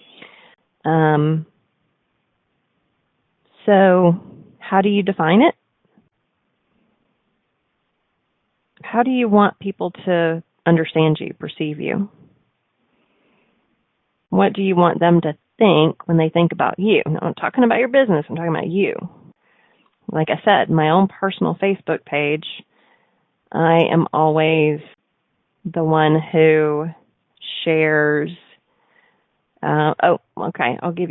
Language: English